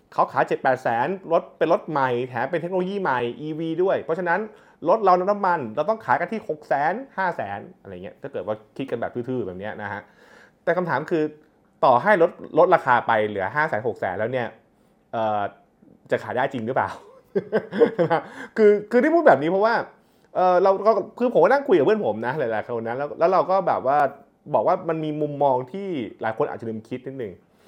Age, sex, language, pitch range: 20-39, male, Thai, 115-190 Hz